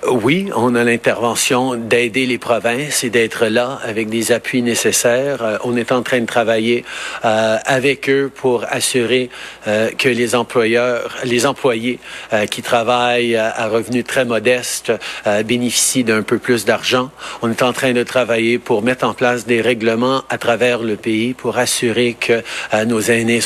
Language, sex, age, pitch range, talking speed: French, male, 50-69, 110-125 Hz, 175 wpm